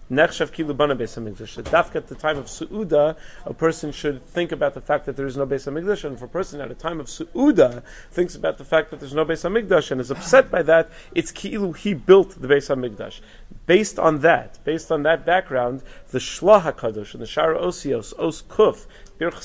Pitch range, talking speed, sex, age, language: 145-185 Hz, 210 wpm, male, 40-59, English